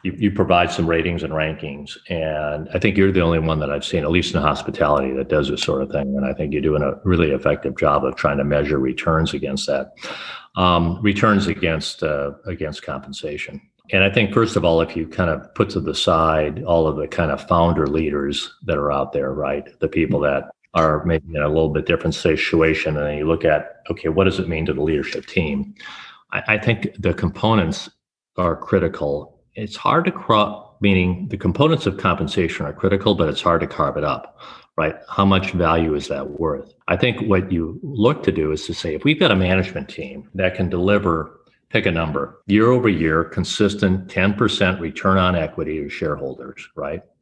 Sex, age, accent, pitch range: male, 40-59, American, 75-95 Hz